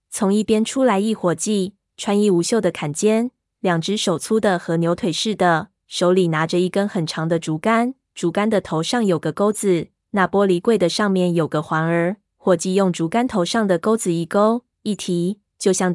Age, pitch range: 20-39, 175-210 Hz